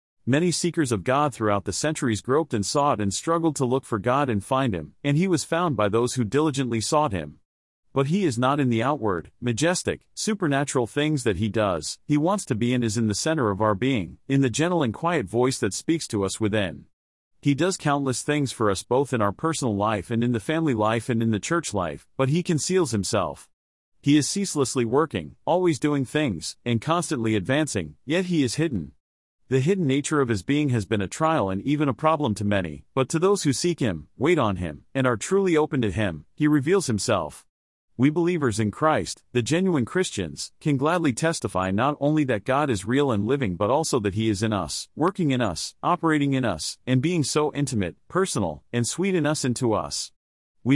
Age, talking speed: 40-59, 215 wpm